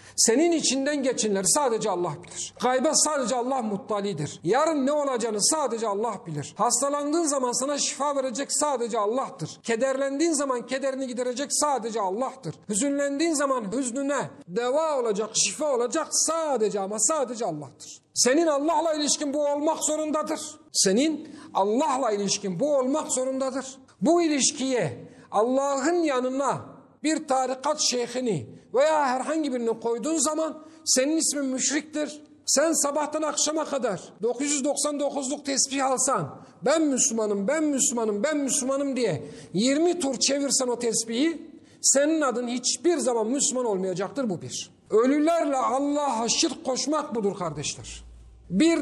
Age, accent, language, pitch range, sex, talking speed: 50-69, native, Turkish, 230-295 Hz, male, 125 wpm